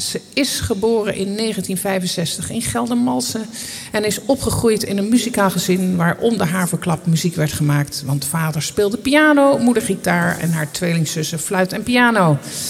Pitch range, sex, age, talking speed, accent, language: 170-235 Hz, male, 50-69, 155 wpm, Dutch, Dutch